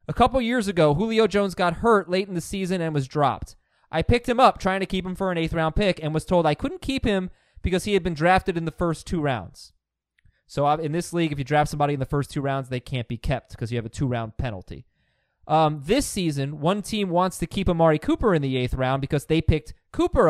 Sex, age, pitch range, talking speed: male, 20-39, 135-195 Hz, 250 wpm